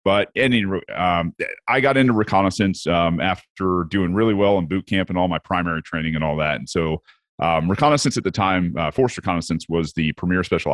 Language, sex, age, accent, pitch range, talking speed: English, male, 30-49, American, 80-100 Hz, 205 wpm